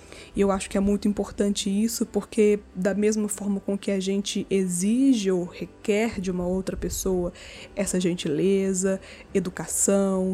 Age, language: 20-39, Portuguese